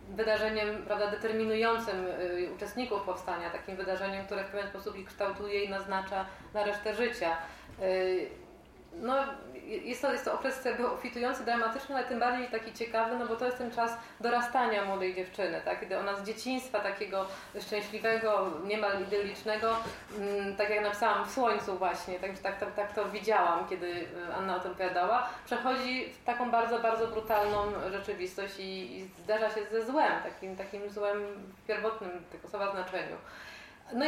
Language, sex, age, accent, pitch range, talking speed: Polish, female, 30-49, native, 190-225 Hz, 155 wpm